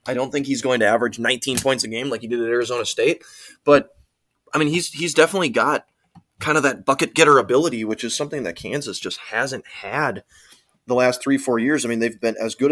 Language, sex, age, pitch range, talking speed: English, male, 20-39, 115-150 Hz, 230 wpm